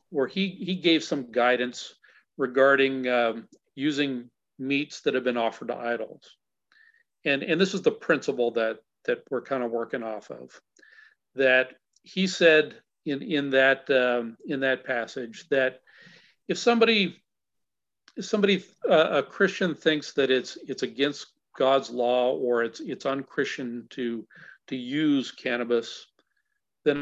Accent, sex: American, male